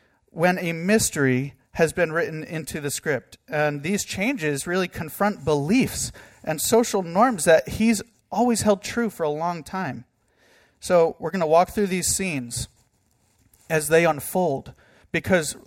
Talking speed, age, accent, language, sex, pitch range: 150 wpm, 40-59, American, English, male, 140-185 Hz